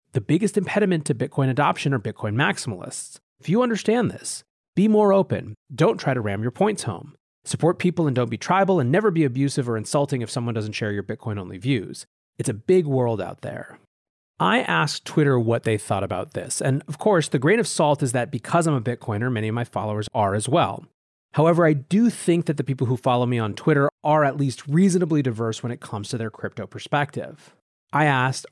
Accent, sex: American, male